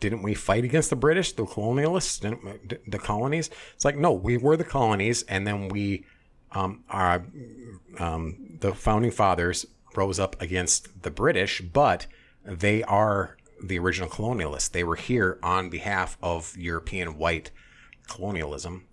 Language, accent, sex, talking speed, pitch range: English, American, male, 150 wpm, 80-100 Hz